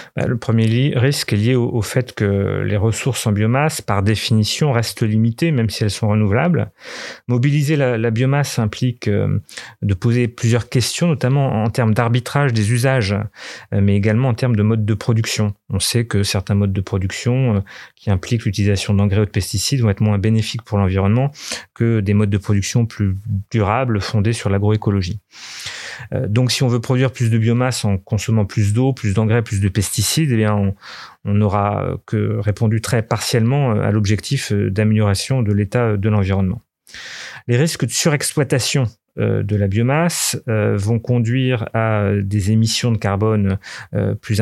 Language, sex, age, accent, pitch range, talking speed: French, male, 30-49, French, 105-125 Hz, 165 wpm